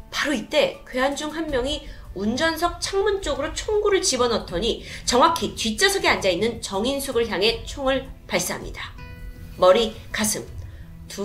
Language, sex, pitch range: Korean, female, 200-315 Hz